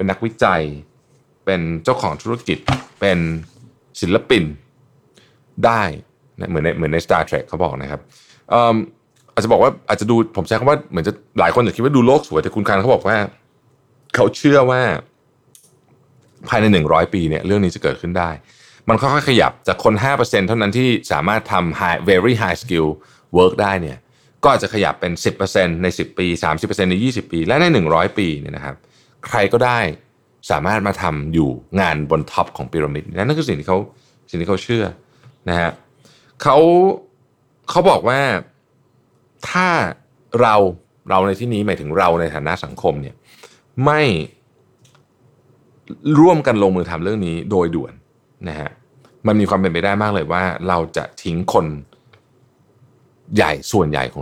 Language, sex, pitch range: Thai, male, 85-125 Hz